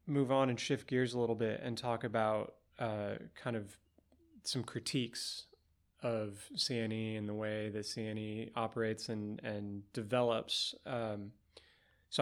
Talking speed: 140 wpm